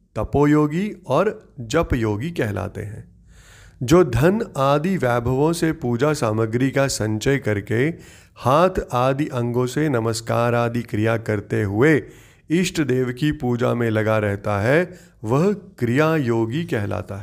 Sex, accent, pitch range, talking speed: male, native, 115-160 Hz, 125 wpm